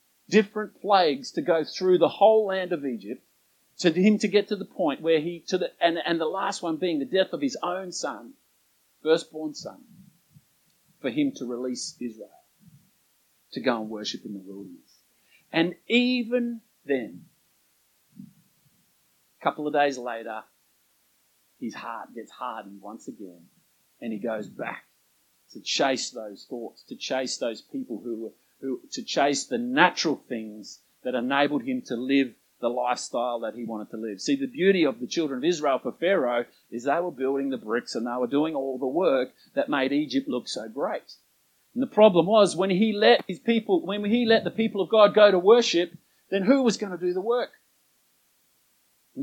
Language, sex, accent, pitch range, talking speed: English, male, Australian, 125-210 Hz, 180 wpm